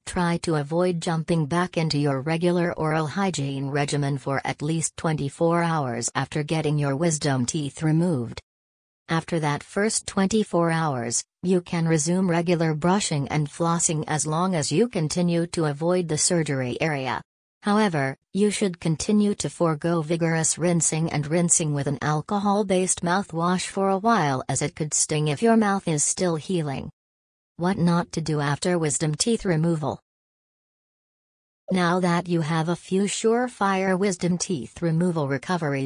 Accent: American